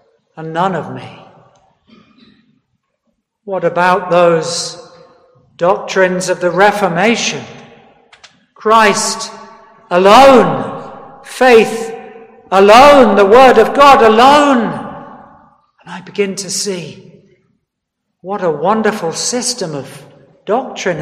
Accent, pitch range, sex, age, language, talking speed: British, 190-240 Hz, male, 60-79, English, 90 wpm